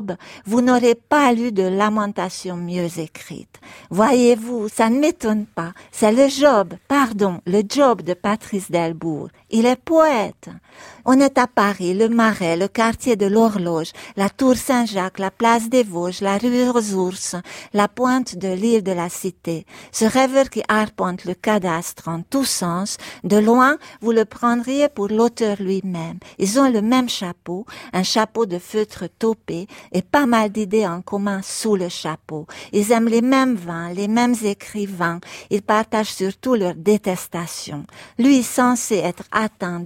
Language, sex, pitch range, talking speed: French, female, 185-230 Hz, 160 wpm